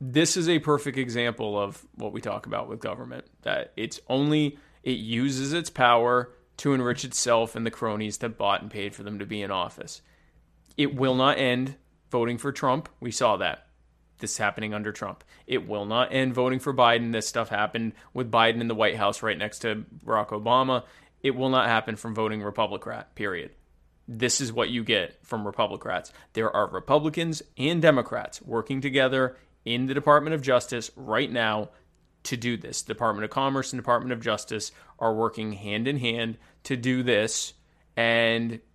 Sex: male